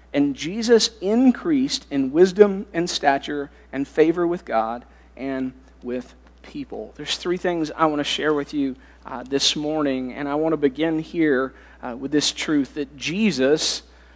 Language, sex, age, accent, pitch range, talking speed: English, male, 40-59, American, 140-230 Hz, 160 wpm